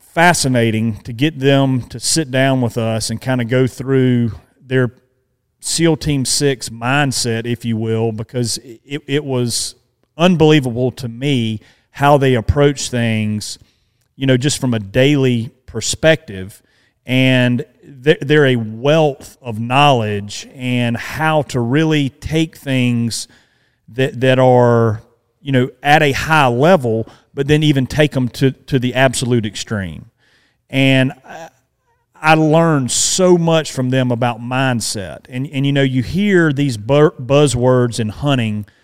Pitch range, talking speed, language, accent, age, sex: 115-140 Hz, 145 wpm, English, American, 40-59, male